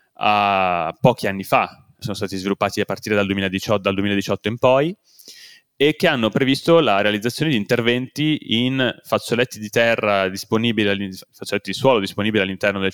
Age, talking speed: 20-39, 150 wpm